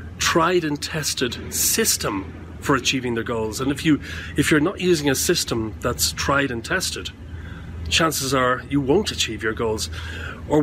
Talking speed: 175 wpm